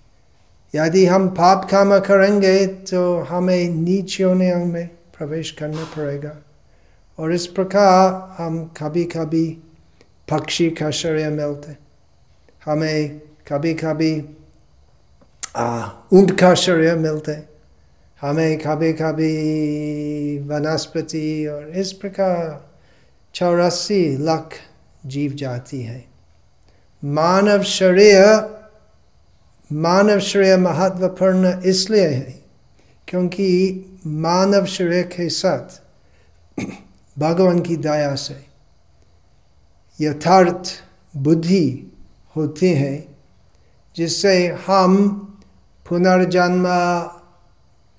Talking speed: 80 wpm